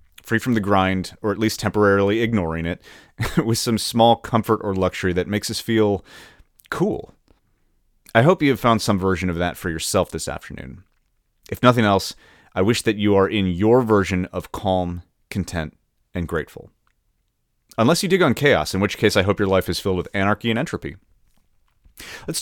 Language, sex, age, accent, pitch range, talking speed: English, male, 30-49, American, 90-125 Hz, 185 wpm